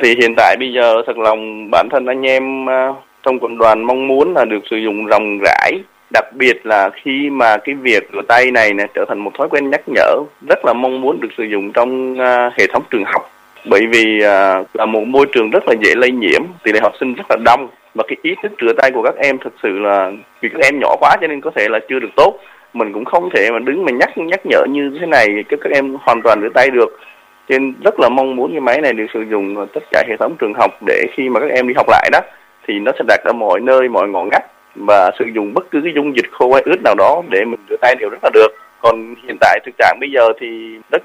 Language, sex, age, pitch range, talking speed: Vietnamese, male, 20-39, 110-135 Hz, 270 wpm